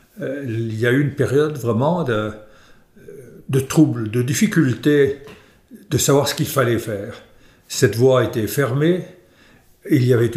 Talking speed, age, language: 150 wpm, 60-79, German